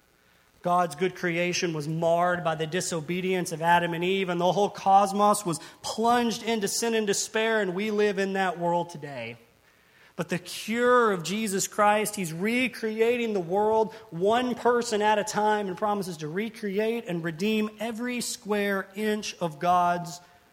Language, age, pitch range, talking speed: English, 30-49, 155-205 Hz, 160 wpm